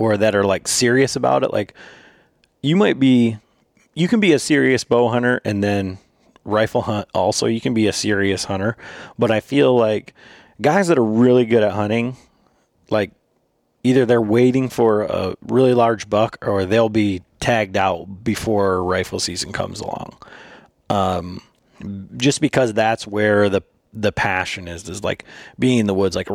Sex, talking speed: male, 170 wpm